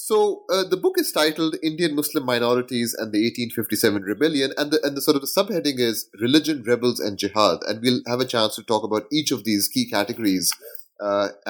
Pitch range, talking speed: 105-150 Hz, 210 wpm